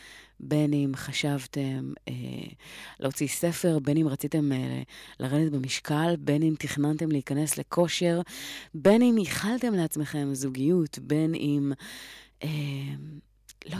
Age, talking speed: 30-49, 115 wpm